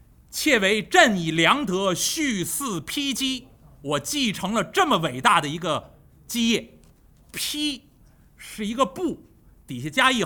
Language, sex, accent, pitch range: Chinese, male, native, 180-270 Hz